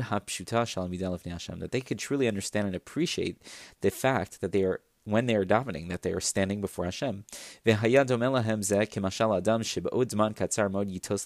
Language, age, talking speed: English, 30-49, 115 wpm